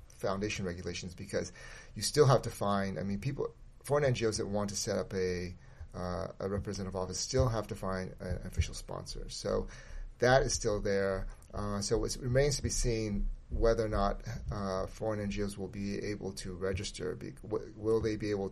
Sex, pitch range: male, 95-110 Hz